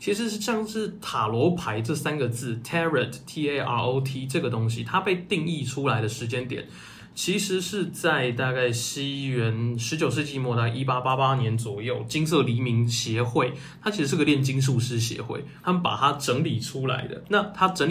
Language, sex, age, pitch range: Chinese, male, 20-39, 120-155 Hz